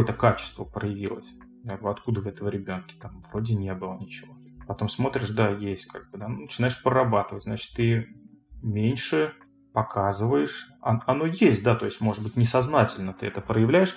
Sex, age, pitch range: male, 30-49, 100-120 Hz